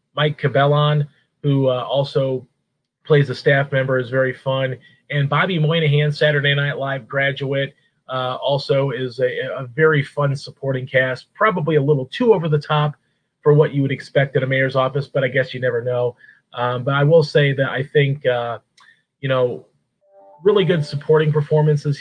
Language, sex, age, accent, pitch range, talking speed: English, male, 30-49, American, 130-150 Hz, 175 wpm